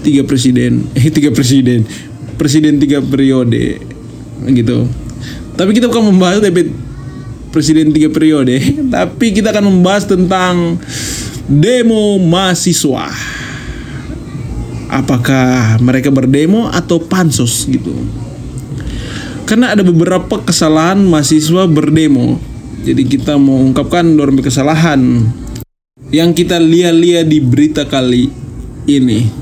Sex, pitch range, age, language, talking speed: male, 130-195 Hz, 20-39, Indonesian, 100 wpm